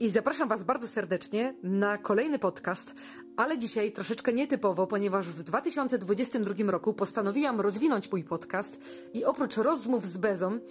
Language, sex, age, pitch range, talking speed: Polish, female, 30-49, 210-255 Hz, 140 wpm